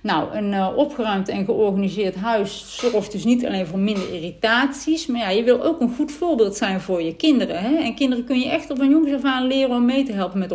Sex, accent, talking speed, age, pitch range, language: female, Dutch, 245 wpm, 50-69, 185-240 Hz, Dutch